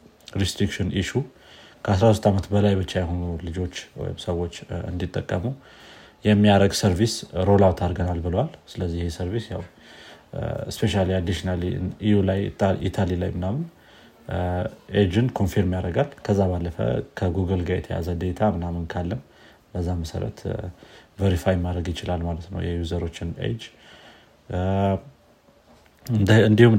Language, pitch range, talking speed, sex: Amharic, 90-105 Hz, 95 wpm, male